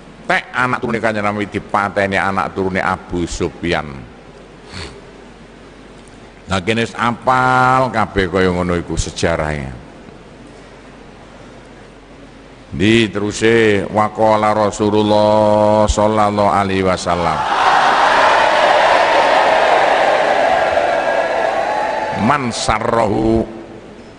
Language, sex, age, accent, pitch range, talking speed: Indonesian, male, 50-69, native, 95-115 Hz, 65 wpm